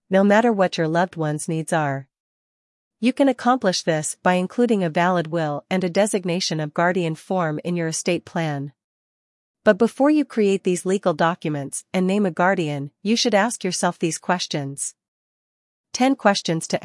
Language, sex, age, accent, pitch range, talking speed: English, female, 40-59, American, 170-215 Hz, 165 wpm